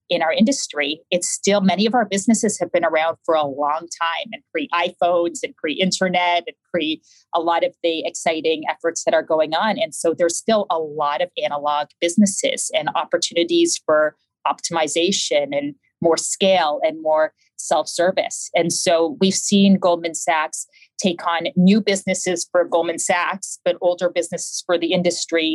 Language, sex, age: English, female, 30-49